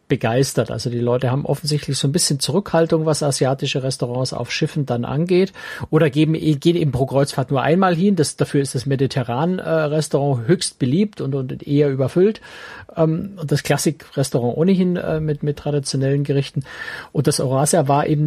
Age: 50-69